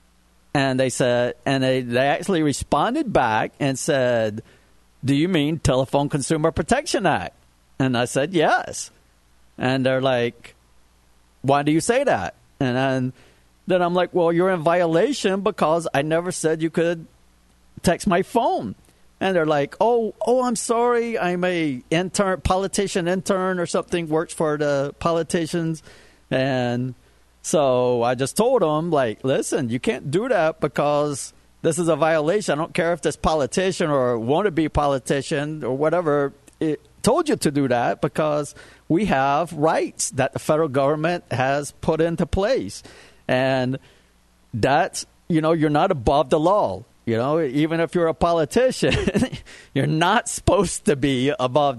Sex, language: male, English